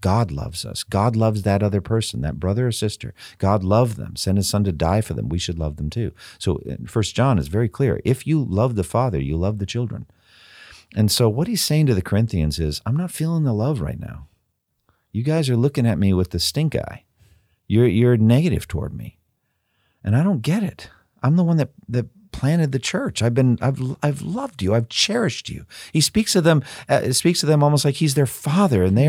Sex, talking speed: male, 225 wpm